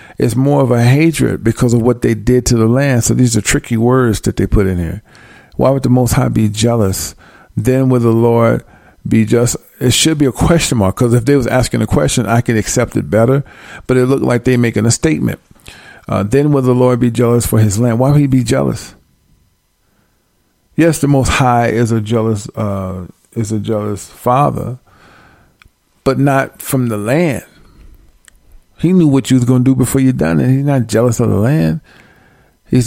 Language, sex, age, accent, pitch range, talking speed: English, male, 50-69, American, 110-130 Hz, 205 wpm